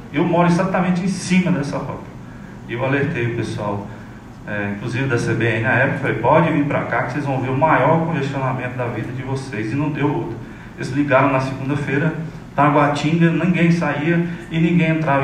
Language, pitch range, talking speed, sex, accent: Portuguese, 125-160 Hz, 185 wpm, male, Brazilian